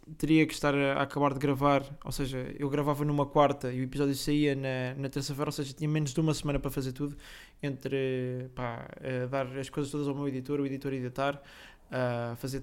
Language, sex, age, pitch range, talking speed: Portuguese, male, 20-39, 130-150 Hz, 210 wpm